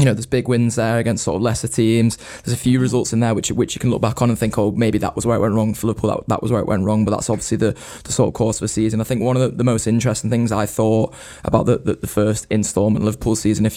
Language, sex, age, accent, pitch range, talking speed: English, male, 20-39, British, 105-115 Hz, 325 wpm